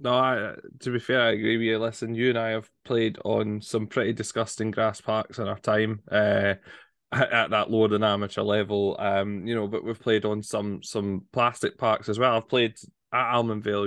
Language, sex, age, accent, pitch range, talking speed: English, male, 20-39, British, 105-125 Hz, 210 wpm